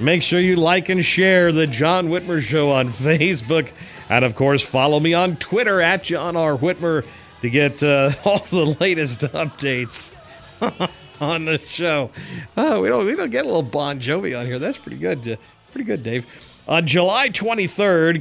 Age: 40-59